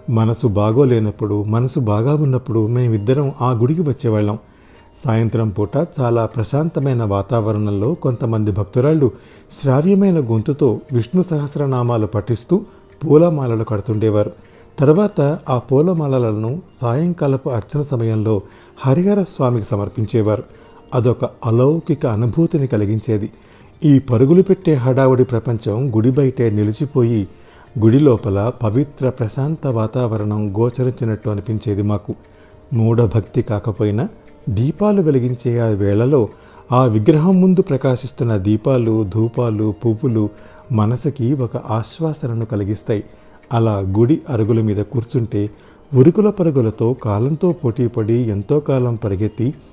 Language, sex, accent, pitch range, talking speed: Telugu, male, native, 110-140 Hz, 100 wpm